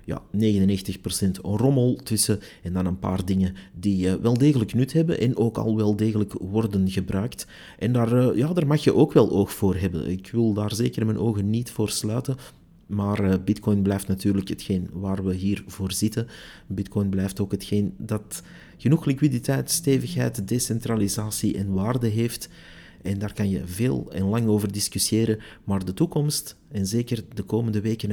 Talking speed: 165 wpm